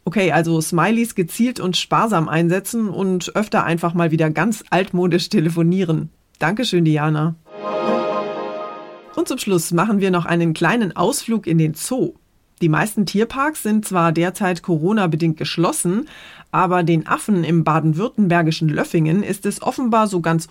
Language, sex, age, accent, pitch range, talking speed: German, female, 30-49, German, 160-205 Hz, 140 wpm